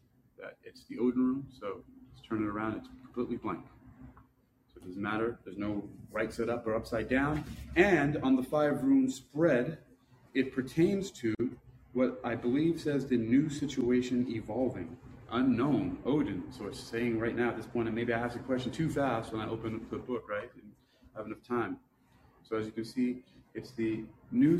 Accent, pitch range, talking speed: American, 115-130 Hz, 200 wpm